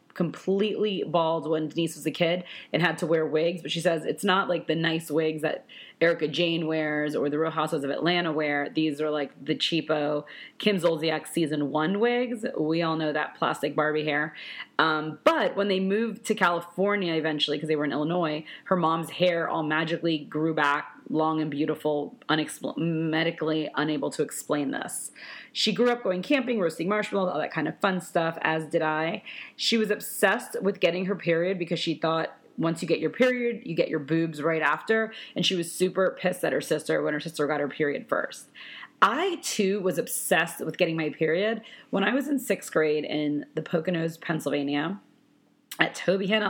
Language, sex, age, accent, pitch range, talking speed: English, female, 30-49, American, 155-195 Hz, 195 wpm